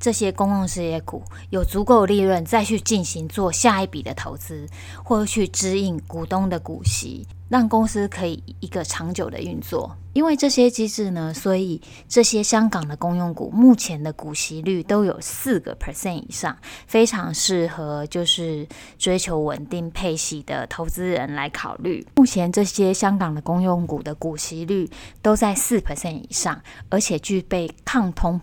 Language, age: Chinese, 20-39